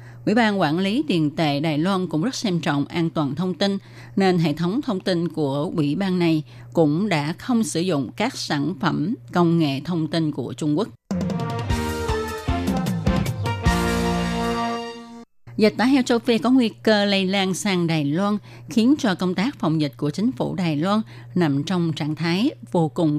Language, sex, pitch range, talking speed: Vietnamese, female, 150-210 Hz, 180 wpm